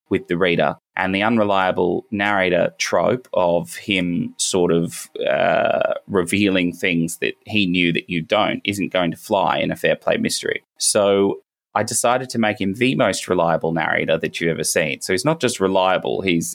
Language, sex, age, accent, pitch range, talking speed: English, male, 20-39, Australian, 90-105 Hz, 180 wpm